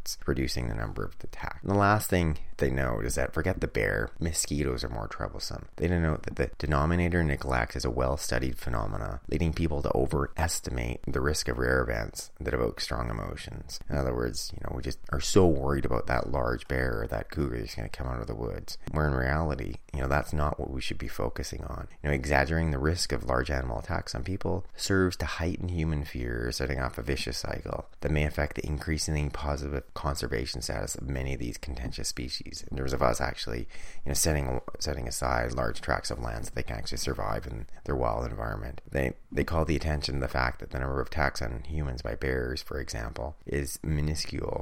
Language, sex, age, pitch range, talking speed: English, male, 30-49, 65-80 Hz, 215 wpm